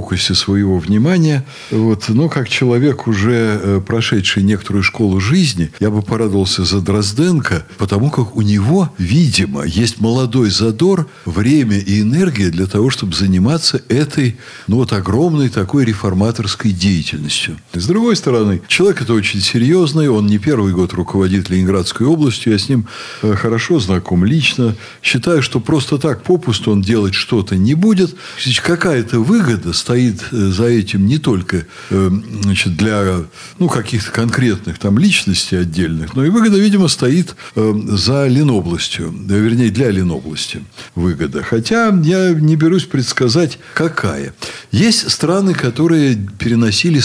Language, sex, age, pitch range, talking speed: Russian, male, 60-79, 100-145 Hz, 130 wpm